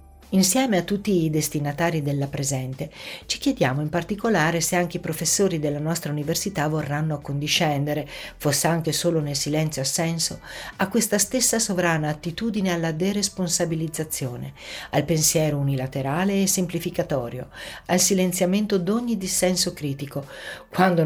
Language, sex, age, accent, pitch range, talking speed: Italian, female, 50-69, native, 140-175 Hz, 125 wpm